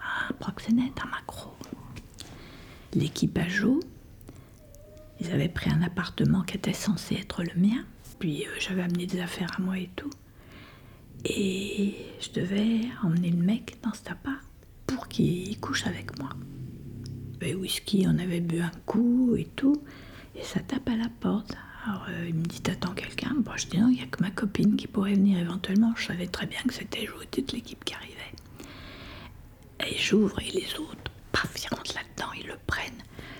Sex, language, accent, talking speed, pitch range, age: female, French, French, 180 wpm, 175-240 Hz, 50-69